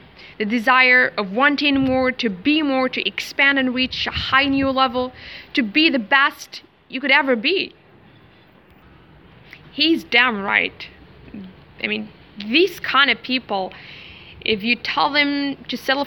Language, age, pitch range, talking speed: English, 20-39, 225-285 Hz, 145 wpm